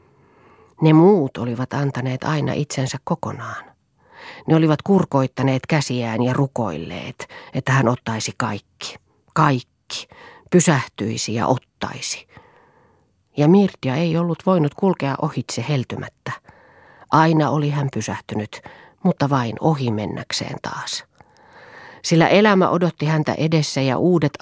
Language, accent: Finnish, native